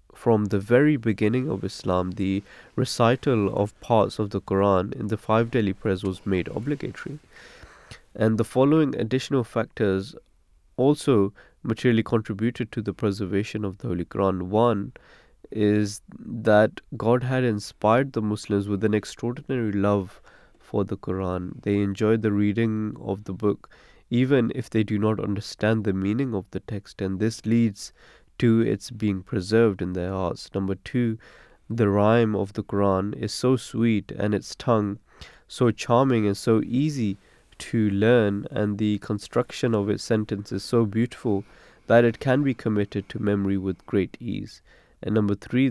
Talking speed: 160 wpm